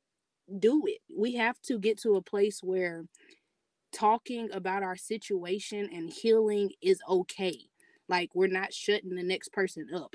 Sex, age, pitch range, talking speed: female, 20-39, 190-235 Hz, 155 wpm